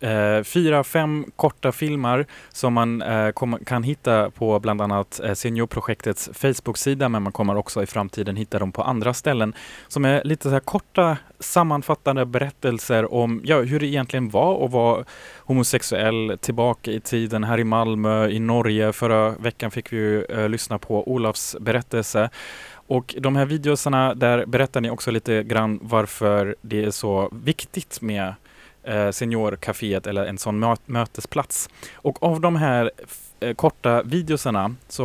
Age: 20-39